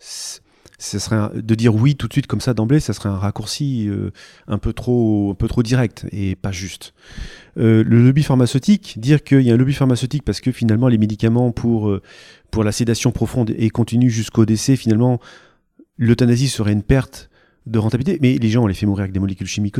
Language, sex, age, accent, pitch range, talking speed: French, male, 30-49, French, 110-135 Hz, 205 wpm